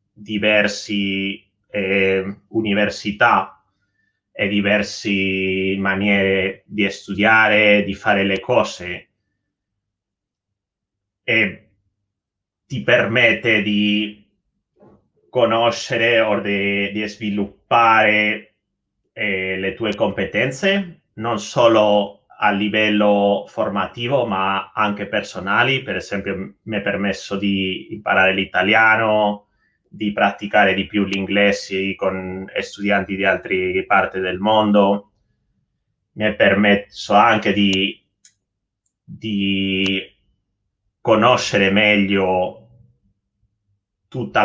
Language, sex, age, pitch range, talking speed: Italian, male, 30-49, 100-110 Hz, 85 wpm